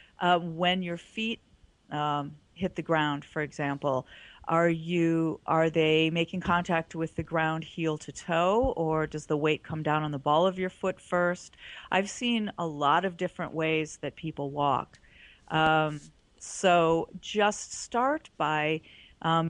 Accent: American